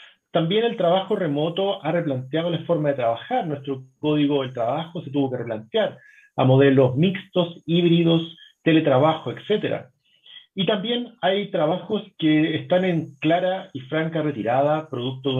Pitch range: 140-180 Hz